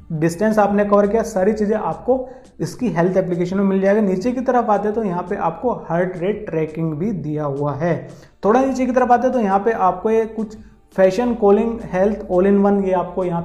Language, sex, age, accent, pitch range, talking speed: Hindi, male, 30-49, native, 180-220 Hz, 225 wpm